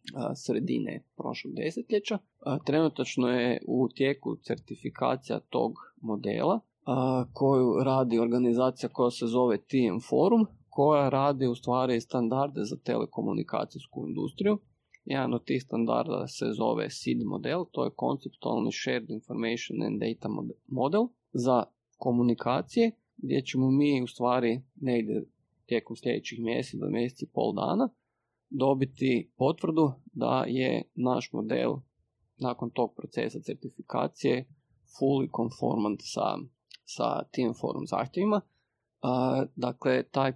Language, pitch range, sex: Croatian, 120-145 Hz, male